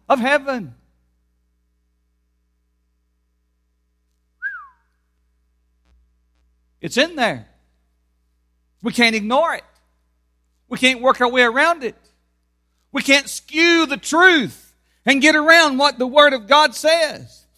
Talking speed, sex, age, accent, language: 100 wpm, male, 50-69, American, English